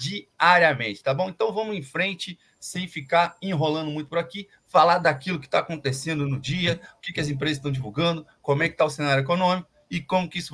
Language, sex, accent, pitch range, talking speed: Portuguese, male, Brazilian, 145-190 Hz, 215 wpm